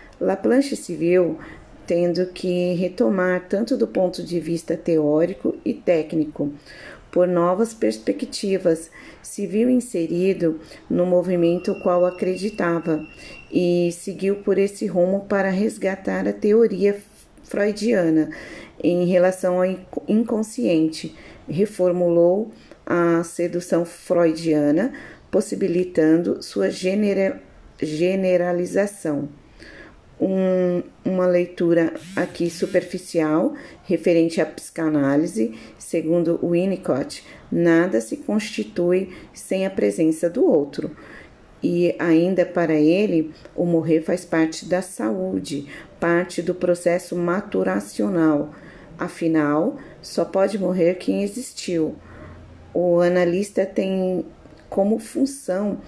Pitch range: 165-195 Hz